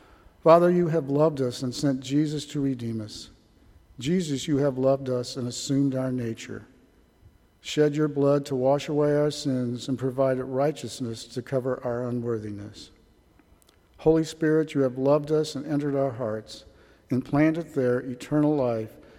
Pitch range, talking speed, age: 120-150 Hz, 155 wpm, 50-69